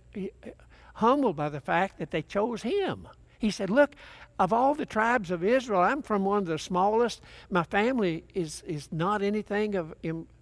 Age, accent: 60-79, American